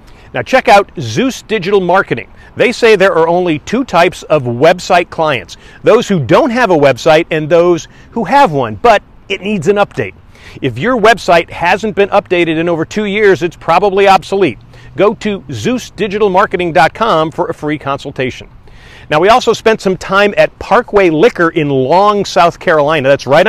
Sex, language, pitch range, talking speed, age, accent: male, English, 145-195 Hz, 170 wpm, 40-59, American